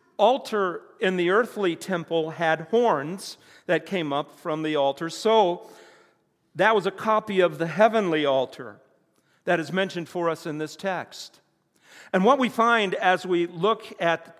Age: 50-69